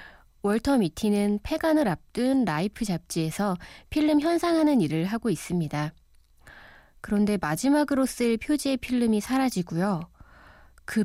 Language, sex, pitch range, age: Korean, female, 175-260 Hz, 20-39